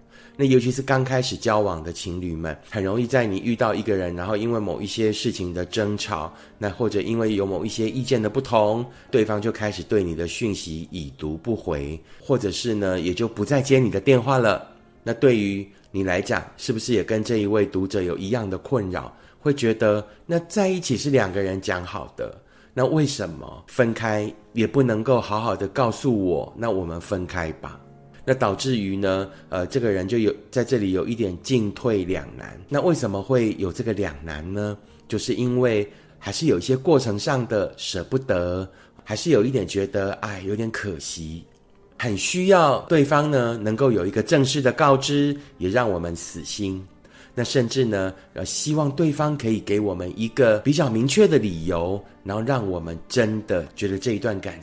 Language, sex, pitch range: Chinese, male, 90-125 Hz